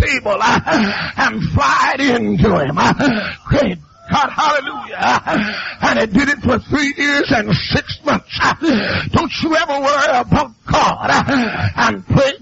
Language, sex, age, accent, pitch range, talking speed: English, male, 60-79, American, 270-315 Hz, 155 wpm